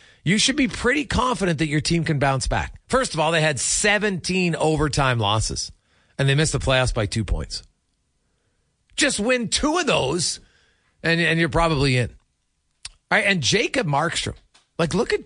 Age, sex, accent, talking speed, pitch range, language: 40-59, male, American, 170 wpm, 110-180 Hz, English